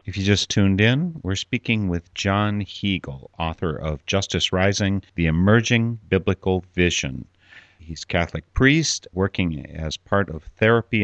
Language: English